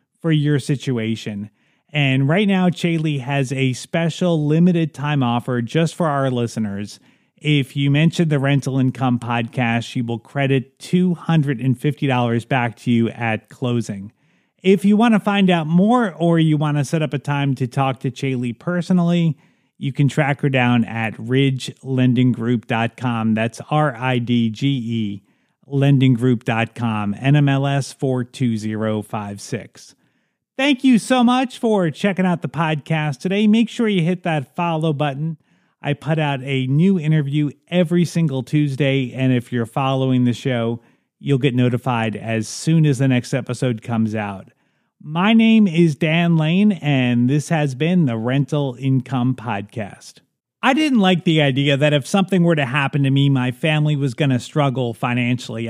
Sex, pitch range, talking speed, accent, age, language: male, 125-160 Hz, 160 wpm, American, 30-49, English